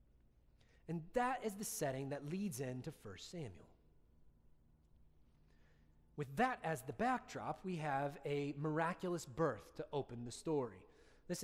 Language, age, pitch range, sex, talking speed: English, 30-49, 125-200 Hz, male, 130 wpm